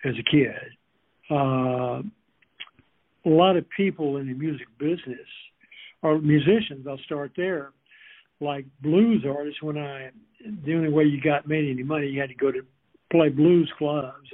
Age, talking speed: 60-79, 160 wpm